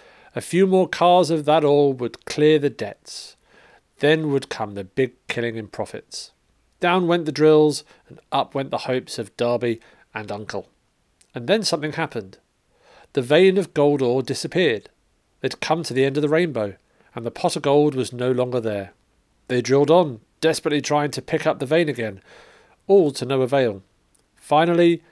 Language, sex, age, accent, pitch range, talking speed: English, male, 40-59, British, 120-160 Hz, 180 wpm